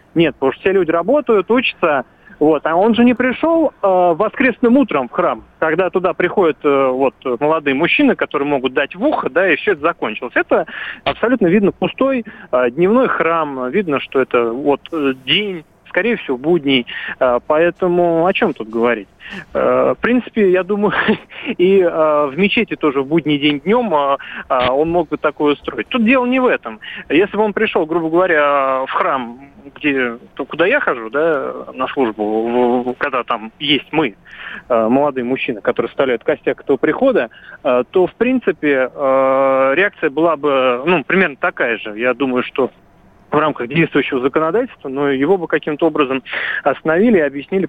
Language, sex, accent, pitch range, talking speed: Russian, male, native, 140-200 Hz, 165 wpm